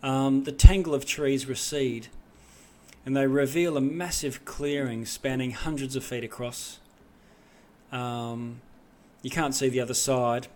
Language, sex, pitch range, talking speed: English, male, 110-140 Hz, 130 wpm